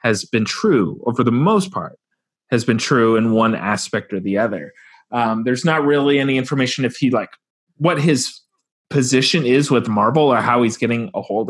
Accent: American